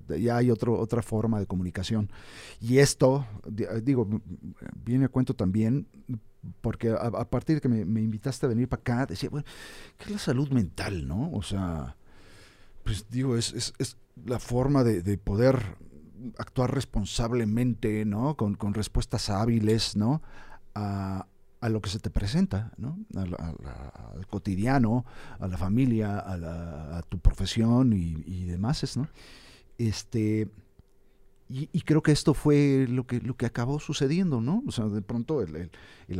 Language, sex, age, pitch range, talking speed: Spanish, male, 50-69, 100-130 Hz, 170 wpm